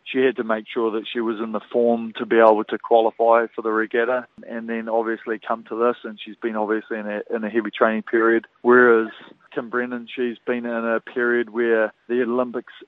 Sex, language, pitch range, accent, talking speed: male, English, 115-125 Hz, Australian, 220 wpm